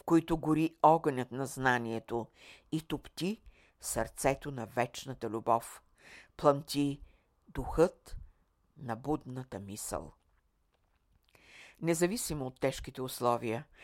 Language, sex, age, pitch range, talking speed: Bulgarian, female, 60-79, 115-150 Hz, 85 wpm